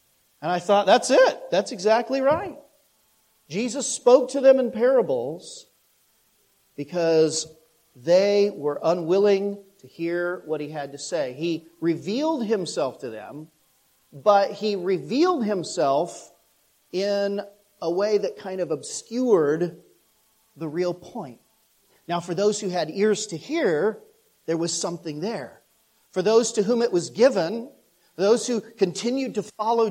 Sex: male